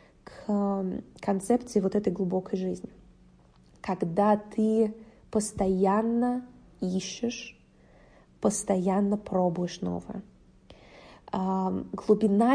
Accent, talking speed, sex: native, 65 wpm, female